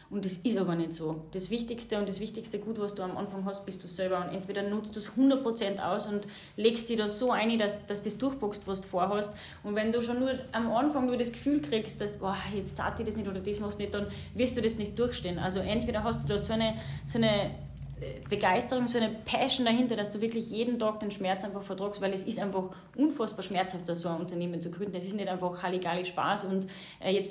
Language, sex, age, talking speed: German, female, 30-49, 240 wpm